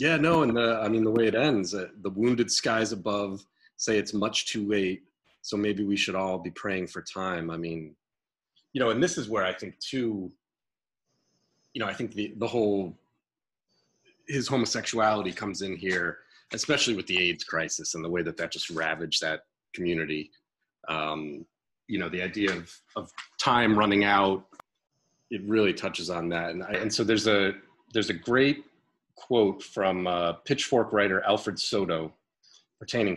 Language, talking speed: English, 175 wpm